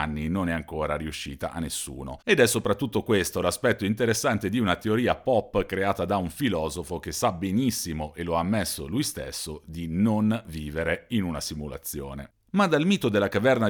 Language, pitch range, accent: Italian, 85-110 Hz, native